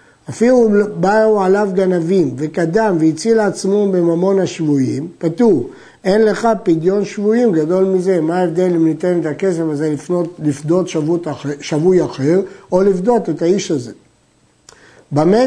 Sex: male